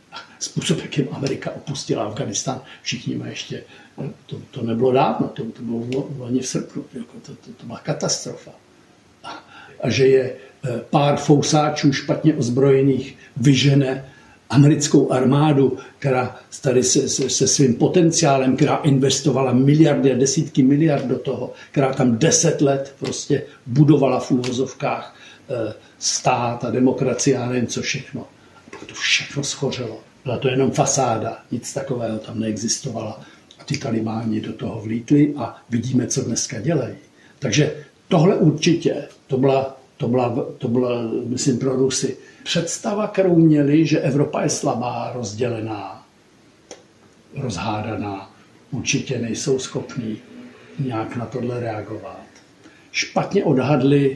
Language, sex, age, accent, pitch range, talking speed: Czech, male, 60-79, native, 120-140 Hz, 130 wpm